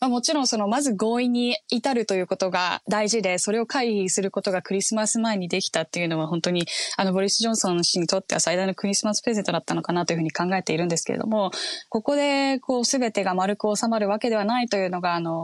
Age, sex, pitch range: 10-29, female, 185-245 Hz